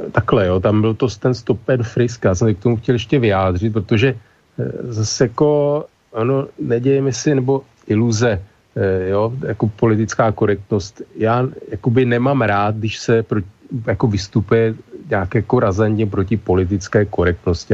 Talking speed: 140 wpm